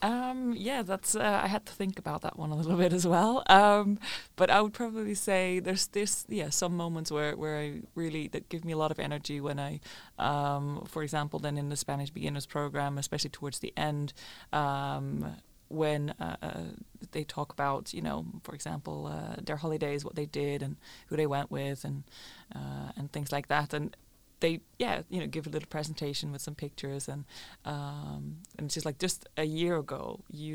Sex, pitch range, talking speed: female, 140-165 Hz, 205 wpm